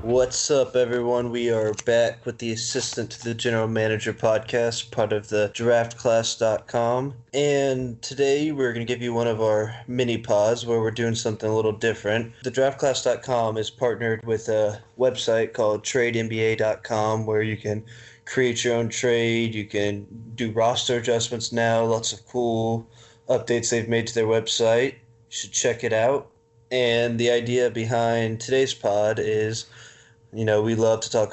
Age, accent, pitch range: 20-39, American, 110-120 Hz